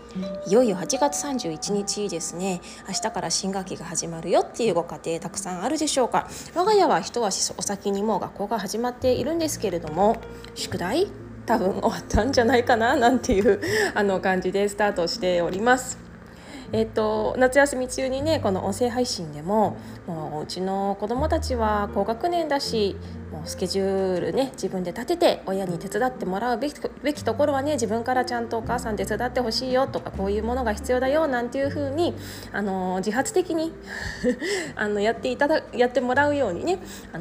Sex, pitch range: female, 190-260 Hz